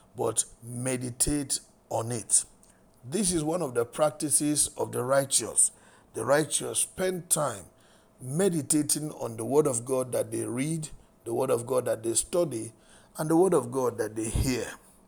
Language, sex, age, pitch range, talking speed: English, male, 50-69, 120-155 Hz, 165 wpm